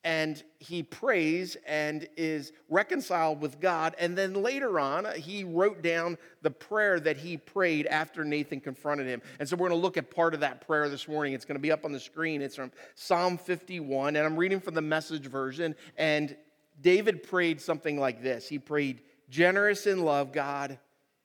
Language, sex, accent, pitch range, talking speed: English, male, American, 145-175 Hz, 190 wpm